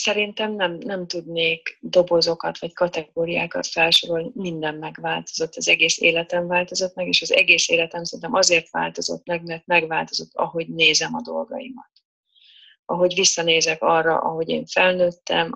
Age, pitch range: 30-49, 160-175 Hz